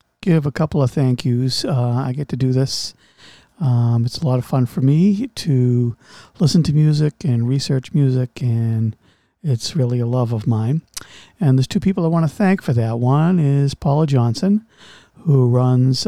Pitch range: 130-170 Hz